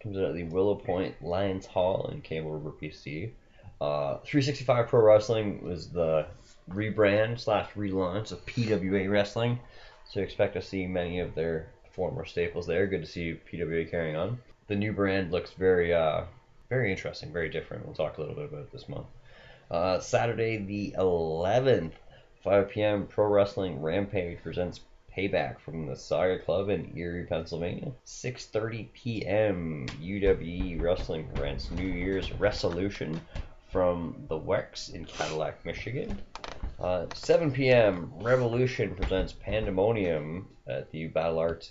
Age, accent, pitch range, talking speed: 20-39, American, 85-105 Hz, 145 wpm